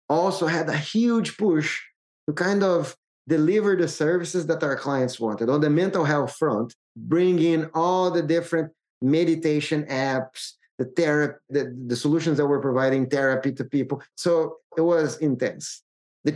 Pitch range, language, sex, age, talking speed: 130-165 Hz, English, male, 30-49, 160 wpm